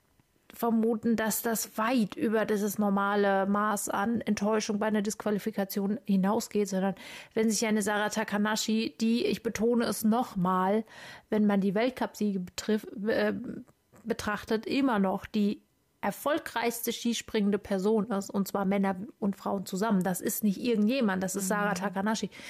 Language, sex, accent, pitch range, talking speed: German, female, German, 200-230 Hz, 140 wpm